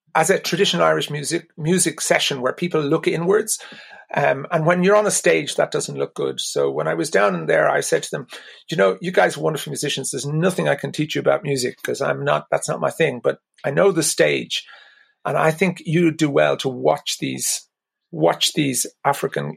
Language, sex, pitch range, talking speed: English, male, 140-190 Hz, 220 wpm